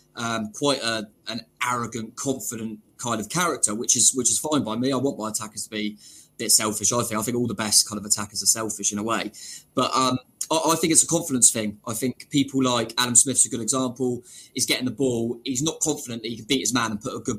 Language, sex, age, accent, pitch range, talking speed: English, male, 20-39, British, 110-140 Hz, 260 wpm